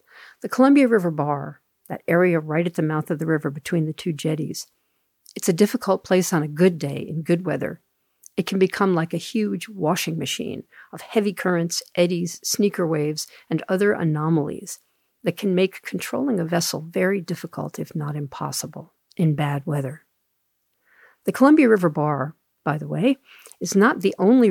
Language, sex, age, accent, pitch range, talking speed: English, female, 50-69, American, 155-195 Hz, 170 wpm